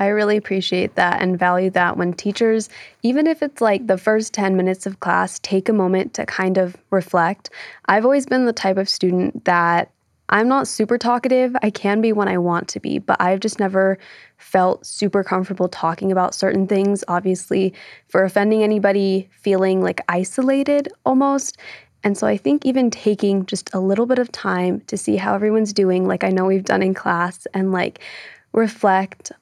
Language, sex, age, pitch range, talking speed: English, female, 20-39, 185-215 Hz, 190 wpm